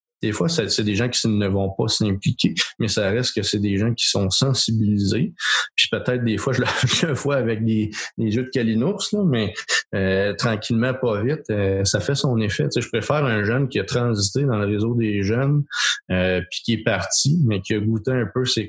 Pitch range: 100-120 Hz